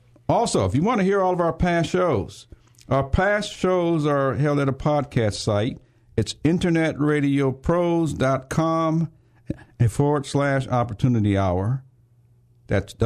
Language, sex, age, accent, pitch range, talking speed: English, male, 50-69, American, 105-140 Hz, 125 wpm